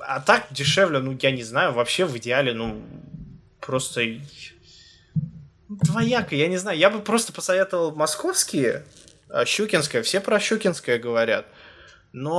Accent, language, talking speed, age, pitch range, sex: native, Russian, 130 wpm, 20-39, 130-190 Hz, male